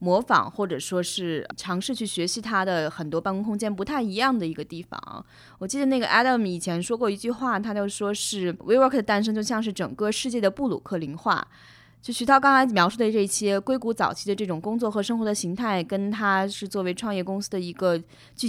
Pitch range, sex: 170-220 Hz, female